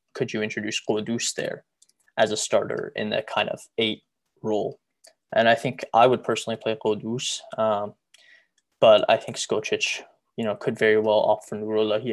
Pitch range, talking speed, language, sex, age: 110-120 Hz, 175 wpm, English, male, 20-39